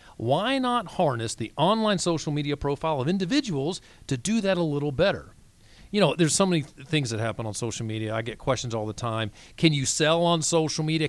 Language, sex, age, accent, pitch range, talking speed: English, male, 40-59, American, 120-185 Hz, 210 wpm